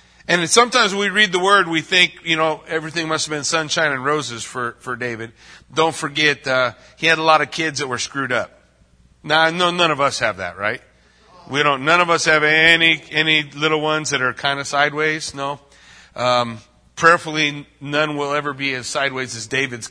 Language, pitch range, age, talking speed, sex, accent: English, 145-200 Hz, 40-59, 205 wpm, male, American